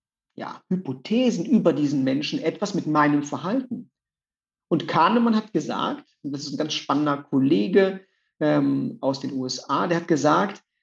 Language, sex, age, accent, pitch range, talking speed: German, male, 50-69, German, 160-235 Hz, 150 wpm